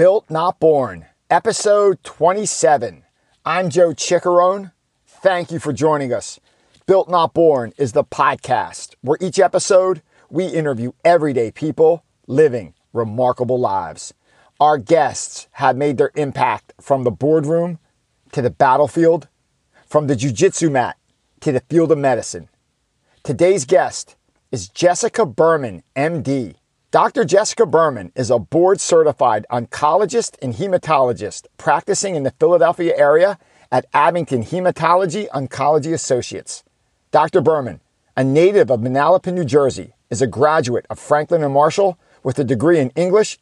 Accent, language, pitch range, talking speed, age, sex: American, English, 135-175 Hz, 130 wpm, 50-69, male